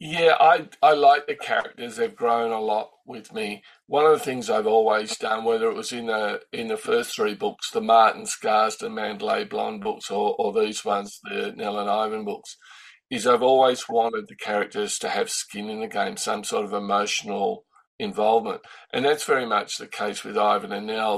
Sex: male